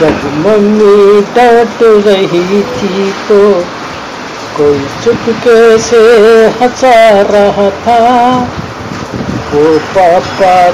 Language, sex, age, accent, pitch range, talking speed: Hindi, female, 60-79, native, 155-225 Hz, 80 wpm